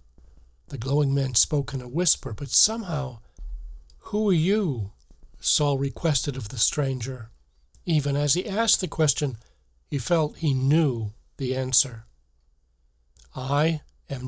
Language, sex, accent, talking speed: English, male, American, 130 wpm